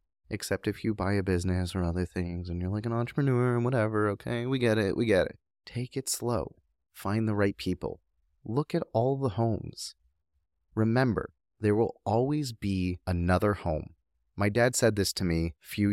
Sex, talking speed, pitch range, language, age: male, 190 wpm, 85-115 Hz, English, 30-49